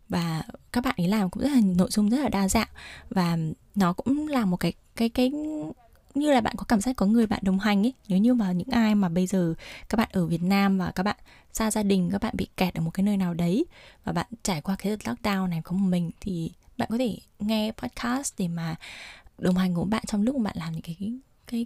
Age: 10-29